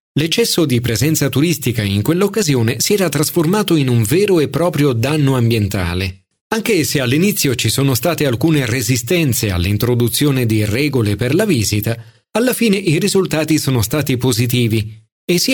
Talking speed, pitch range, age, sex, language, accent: 150 wpm, 115-175 Hz, 40-59, male, Italian, native